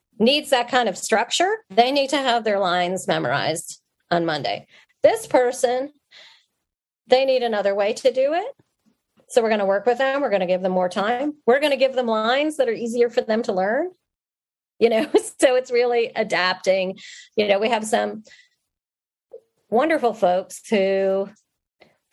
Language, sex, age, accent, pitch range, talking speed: English, female, 40-59, American, 195-260 Hz, 175 wpm